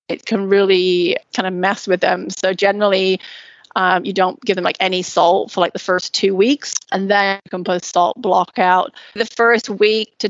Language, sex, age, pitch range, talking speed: English, female, 30-49, 180-210 Hz, 210 wpm